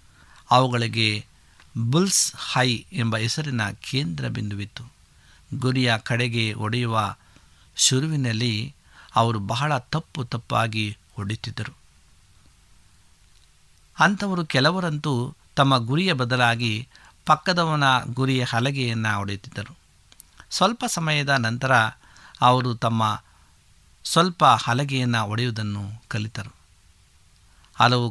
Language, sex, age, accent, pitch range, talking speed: Kannada, male, 60-79, native, 100-135 Hz, 75 wpm